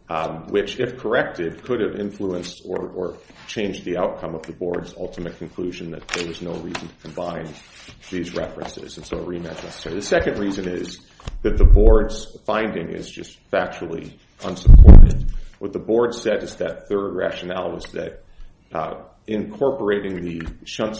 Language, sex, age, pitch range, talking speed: English, male, 40-59, 85-100 Hz, 165 wpm